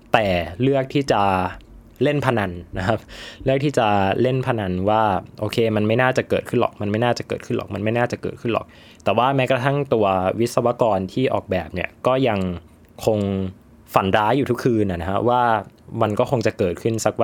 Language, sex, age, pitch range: Thai, male, 20-39, 95-120 Hz